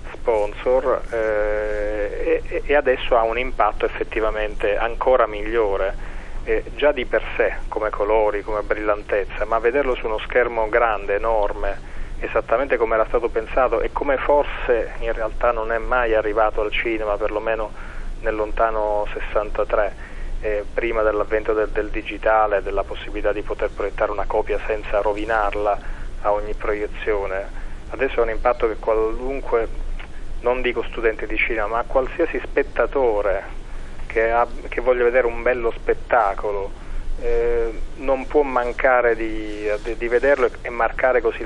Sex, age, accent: male, 30-49, native